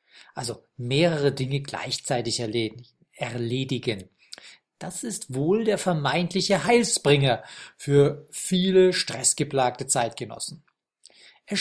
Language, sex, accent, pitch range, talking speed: German, male, German, 125-175 Hz, 85 wpm